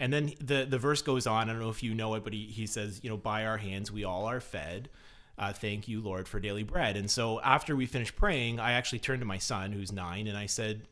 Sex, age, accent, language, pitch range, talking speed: male, 30-49, American, English, 100-125 Hz, 280 wpm